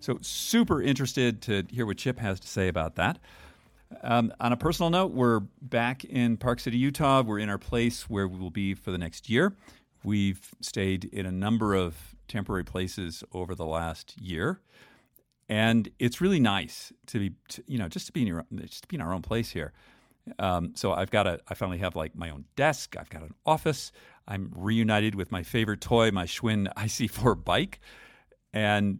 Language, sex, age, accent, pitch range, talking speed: English, male, 50-69, American, 90-120 Hz, 200 wpm